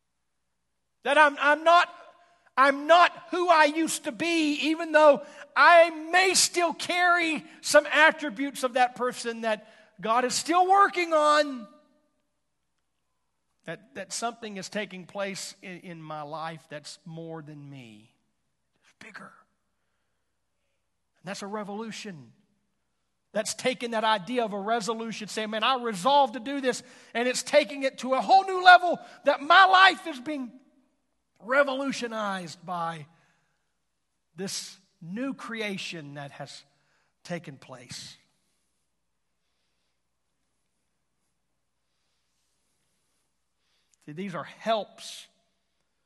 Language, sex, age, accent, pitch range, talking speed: English, male, 50-69, American, 180-275 Hz, 115 wpm